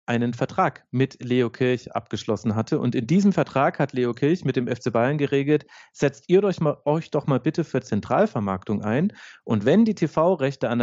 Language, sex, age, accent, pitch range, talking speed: German, male, 40-59, German, 115-150 Hz, 190 wpm